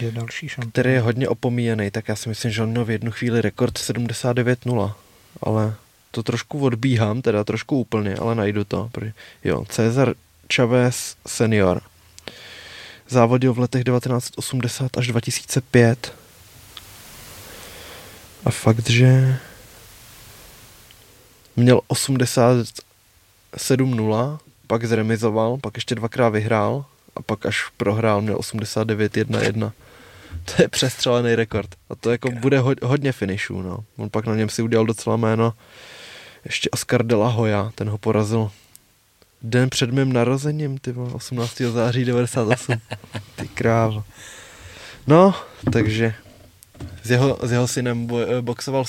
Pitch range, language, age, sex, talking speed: 110-125 Hz, Czech, 20-39, male, 120 wpm